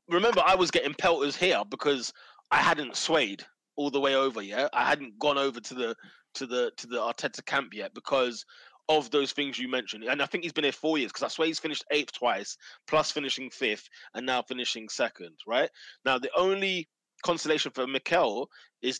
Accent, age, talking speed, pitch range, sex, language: British, 20-39, 200 wpm, 130-165 Hz, male, English